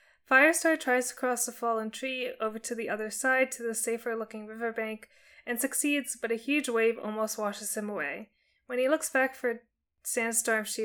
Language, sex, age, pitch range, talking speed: English, female, 20-39, 220-260 Hz, 185 wpm